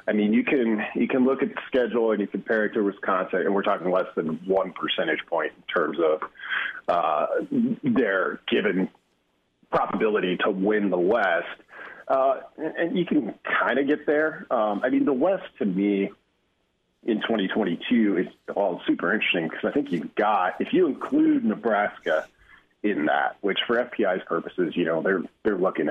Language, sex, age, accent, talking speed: English, male, 40-59, American, 175 wpm